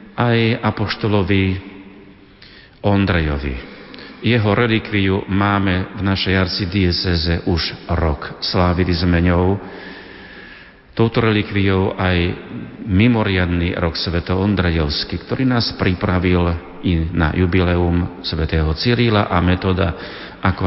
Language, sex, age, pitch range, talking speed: Slovak, male, 40-59, 85-100 Hz, 95 wpm